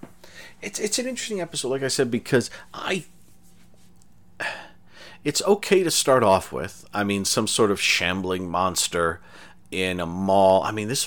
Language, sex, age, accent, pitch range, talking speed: English, male, 40-59, American, 90-125 Hz, 155 wpm